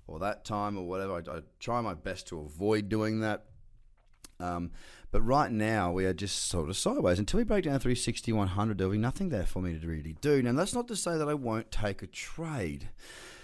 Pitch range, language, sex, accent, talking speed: 95-145 Hz, English, male, Australian, 230 wpm